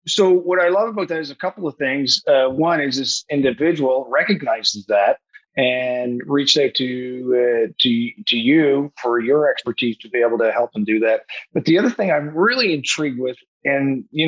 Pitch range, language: 130-170 Hz, English